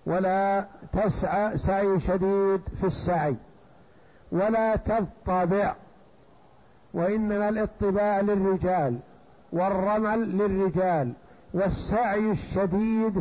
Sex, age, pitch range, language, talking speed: male, 60-79, 180-210 Hz, Arabic, 70 wpm